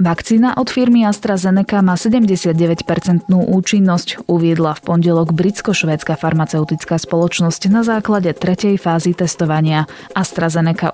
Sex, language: female, Slovak